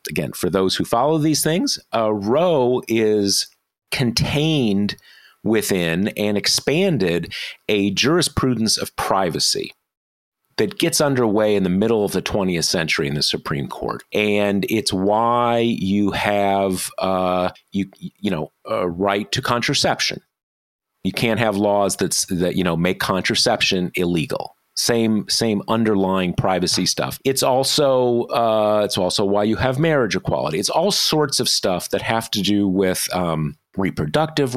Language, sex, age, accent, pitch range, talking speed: English, male, 40-59, American, 100-130 Hz, 145 wpm